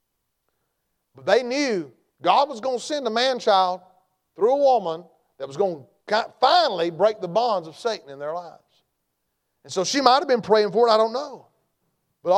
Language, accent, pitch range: English, American, 150-235 Hz